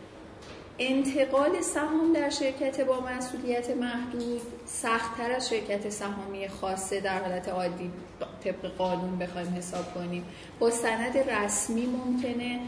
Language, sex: Persian, female